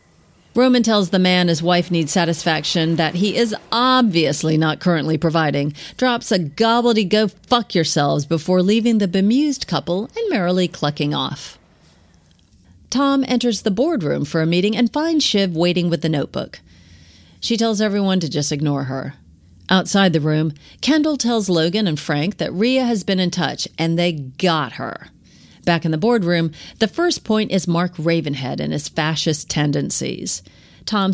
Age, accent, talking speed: 40-59, American, 160 wpm